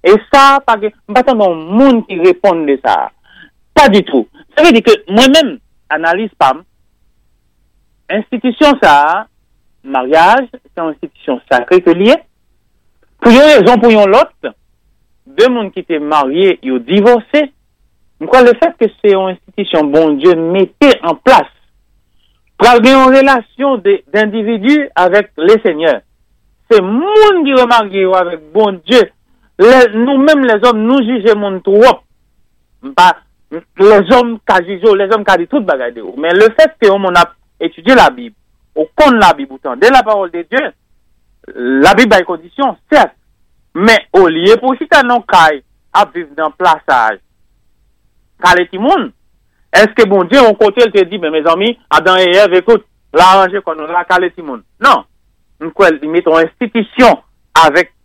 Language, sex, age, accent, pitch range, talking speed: English, male, 60-79, French, 180-255 Hz, 140 wpm